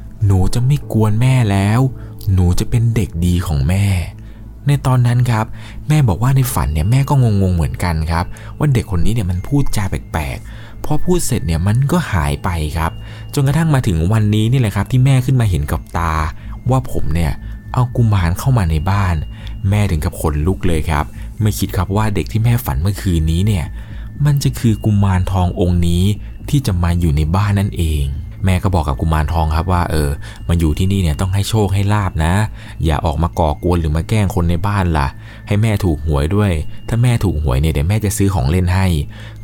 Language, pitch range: Thai, 85-110 Hz